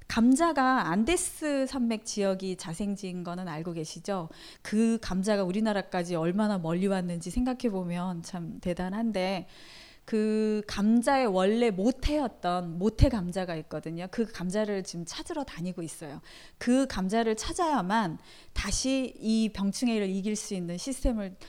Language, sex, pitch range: Korean, female, 180-230 Hz